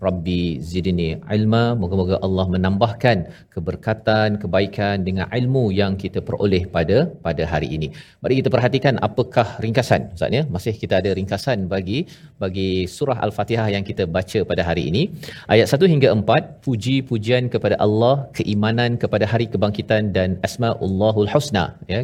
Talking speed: 145 wpm